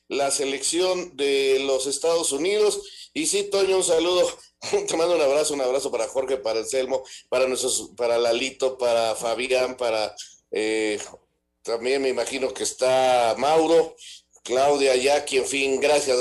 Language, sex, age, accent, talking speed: Spanish, male, 50-69, Mexican, 150 wpm